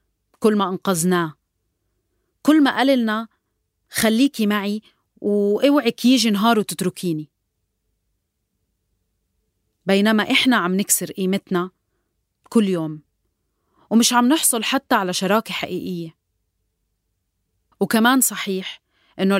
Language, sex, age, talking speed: Arabic, female, 30-49, 90 wpm